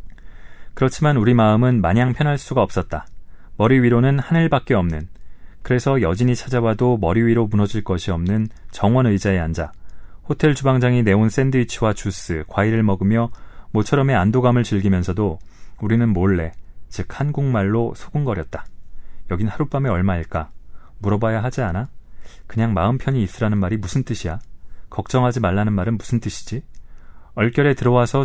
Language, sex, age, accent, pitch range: Korean, male, 30-49, native, 95-125 Hz